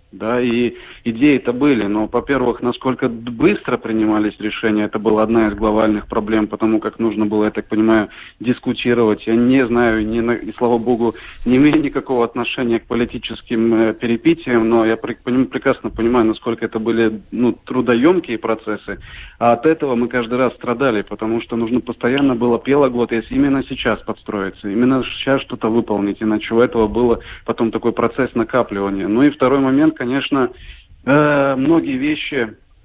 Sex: male